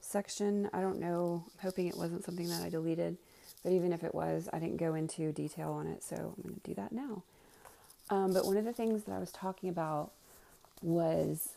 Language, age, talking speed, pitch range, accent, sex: English, 30-49, 220 wpm, 155-190 Hz, American, female